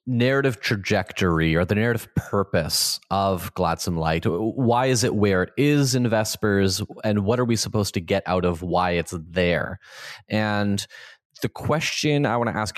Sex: male